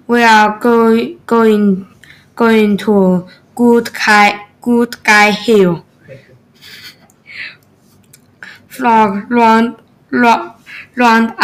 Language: Chinese